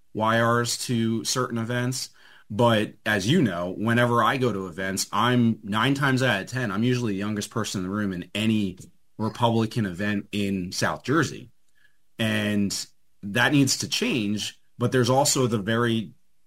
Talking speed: 160 wpm